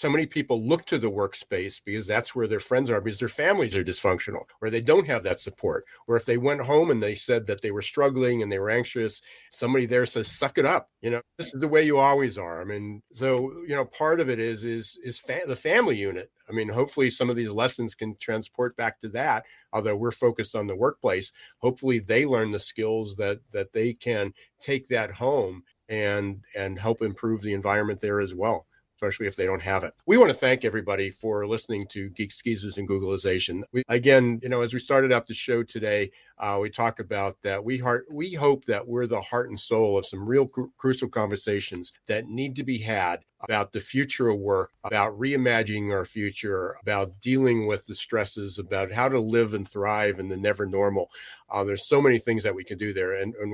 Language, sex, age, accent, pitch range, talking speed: English, male, 40-59, American, 100-125 Hz, 220 wpm